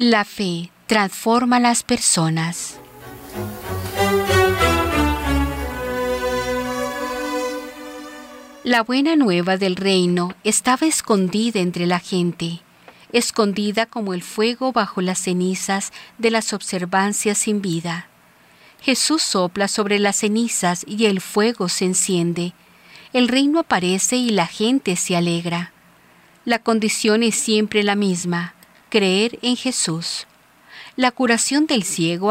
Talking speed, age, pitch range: 110 wpm, 40-59, 180-230 Hz